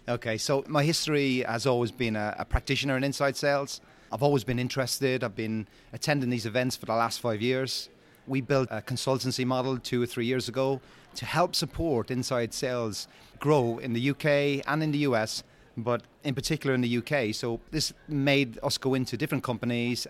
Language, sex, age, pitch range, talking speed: English, male, 30-49, 120-145 Hz, 190 wpm